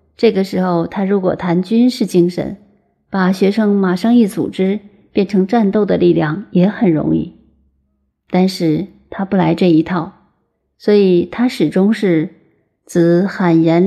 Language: Chinese